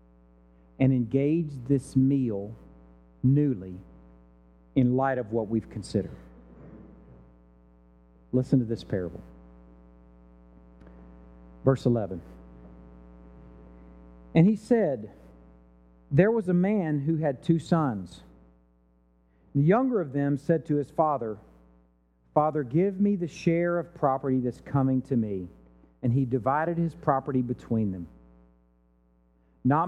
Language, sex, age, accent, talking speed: English, male, 50-69, American, 110 wpm